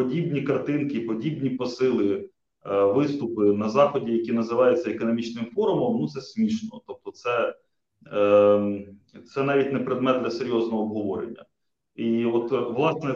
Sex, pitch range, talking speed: male, 110-150 Hz, 130 wpm